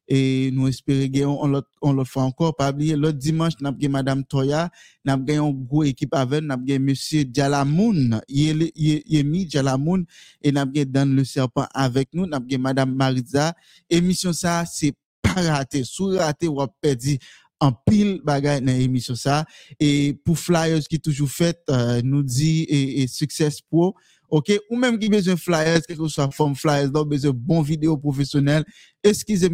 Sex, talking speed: male, 175 wpm